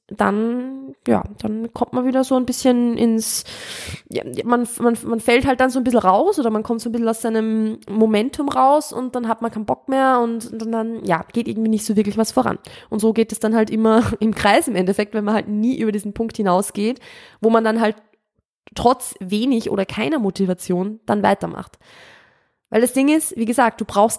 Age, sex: 20-39, female